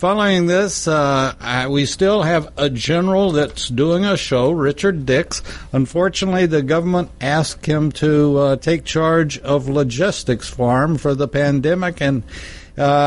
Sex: male